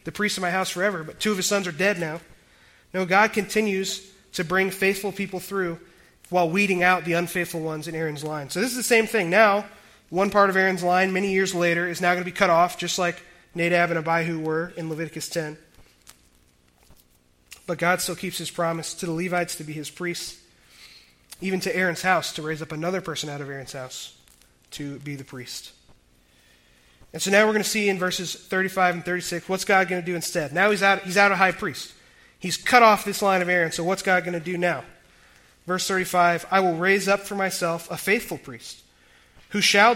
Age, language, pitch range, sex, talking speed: 30-49, English, 160-190 Hz, male, 215 wpm